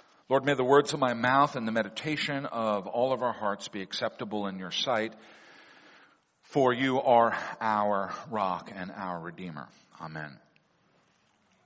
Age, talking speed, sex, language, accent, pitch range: 50-69, 150 wpm, male, English, American, 135-185 Hz